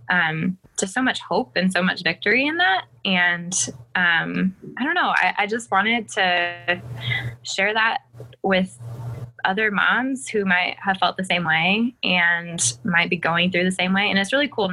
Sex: female